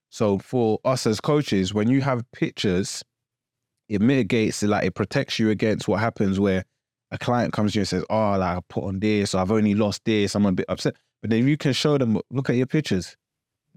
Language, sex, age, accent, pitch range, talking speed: English, male, 20-39, British, 100-125 Hz, 225 wpm